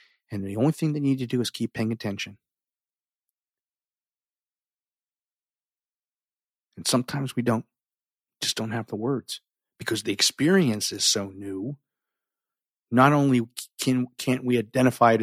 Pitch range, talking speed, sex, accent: 115-145 Hz, 135 wpm, male, American